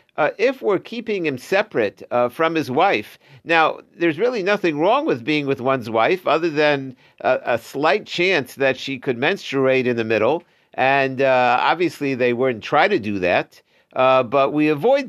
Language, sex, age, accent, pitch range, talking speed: English, male, 50-69, American, 130-190 Hz, 185 wpm